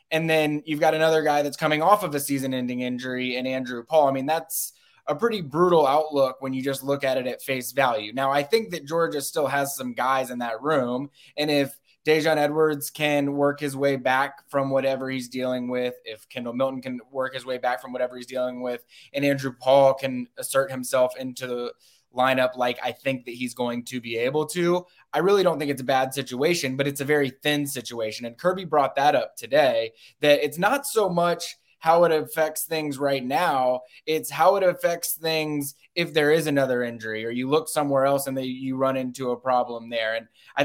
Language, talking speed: English, 215 wpm